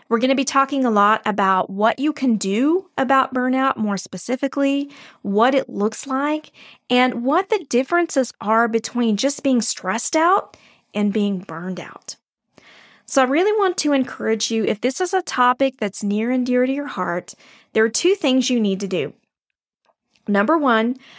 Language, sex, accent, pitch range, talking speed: English, female, American, 215-280 Hz, 180 wpm